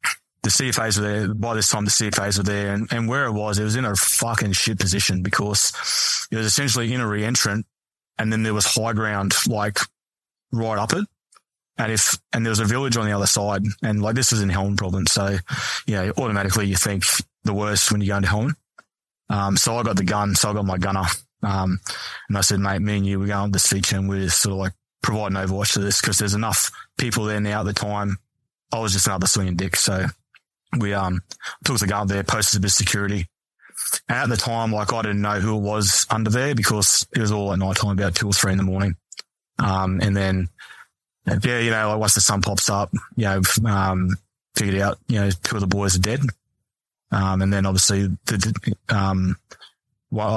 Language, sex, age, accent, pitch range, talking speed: English, male, 20-39, Australian, 95-110 Hz, 230 wpm